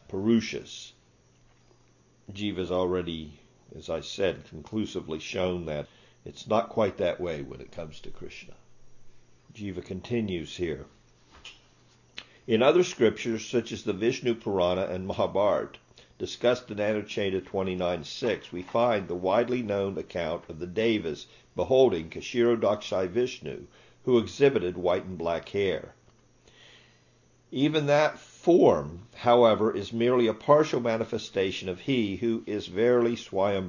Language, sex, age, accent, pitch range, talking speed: English, male, 50-69, American, 95-125 Hz, 125 wpm